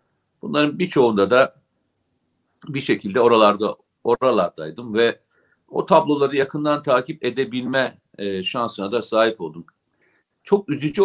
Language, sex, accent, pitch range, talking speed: Turkish, male, native, 115-145 Hz, 110 wpm